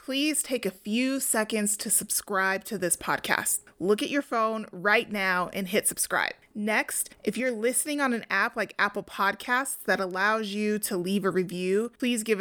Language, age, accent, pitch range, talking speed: English, 30-49, American, 190-235 Hz, 185 wpm